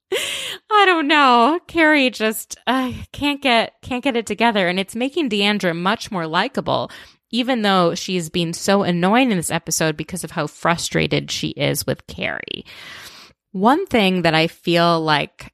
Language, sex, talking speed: English, female, 160 wpm